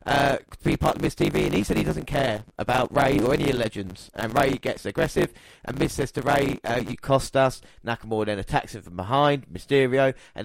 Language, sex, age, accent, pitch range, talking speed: English, male, 20-39, British, 110-135 Hz, 225 wpm